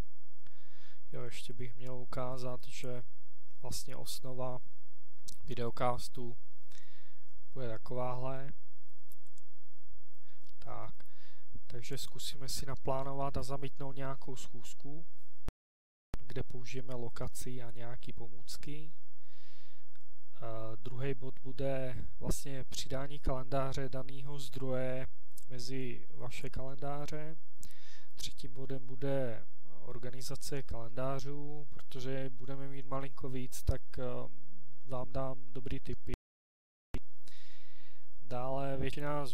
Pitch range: 125-135 Hz